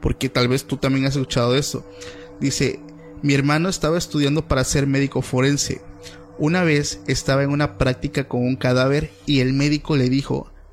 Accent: Venezuelan